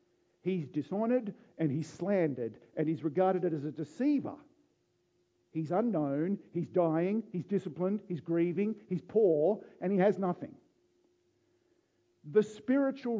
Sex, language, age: male, English, 50-69